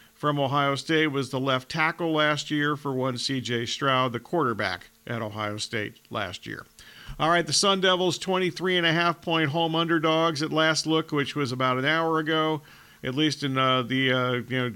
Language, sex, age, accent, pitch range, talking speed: English, male, 50-69, American, 135-170 Hz, 185 wpm